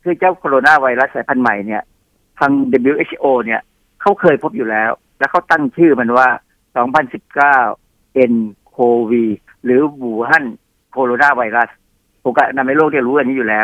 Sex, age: male, 60-79